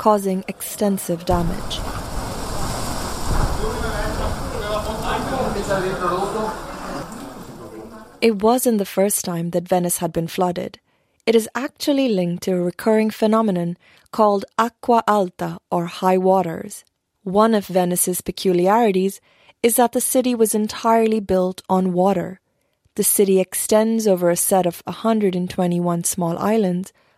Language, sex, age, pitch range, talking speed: English, female, 30-49, 180-220 Hz, 110 wpm